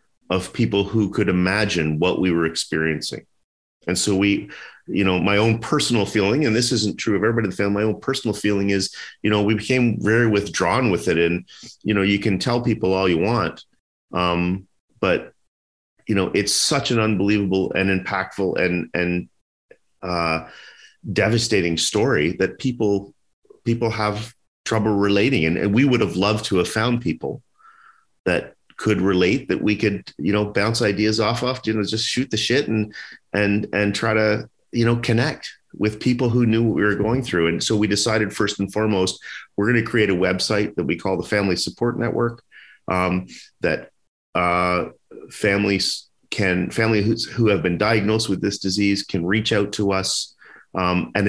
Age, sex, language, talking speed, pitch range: 40-59, male, English, 185 wpm, 95-110 Hz